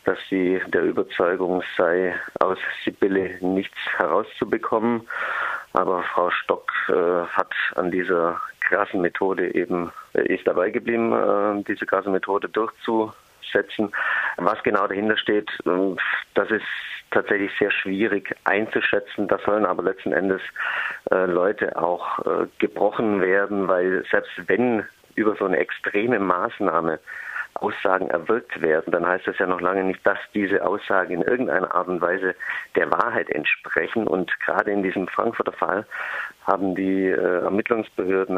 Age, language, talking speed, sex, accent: 50-69, German, 140 wpm, male, German